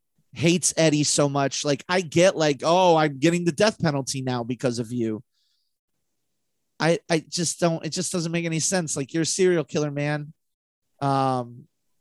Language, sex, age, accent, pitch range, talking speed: English, male, 30-49, American, 135-175 Hz, 175 wpm